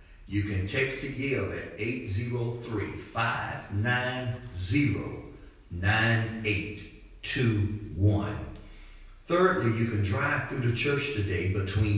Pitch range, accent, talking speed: 85-105 Hz, American, 80 wpm